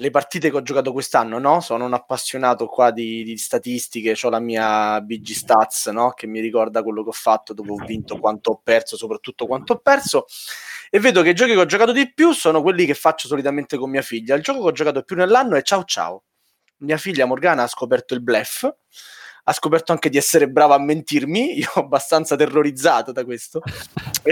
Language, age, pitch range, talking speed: Italian, 20-39, 135-225 Hz, 215 wpm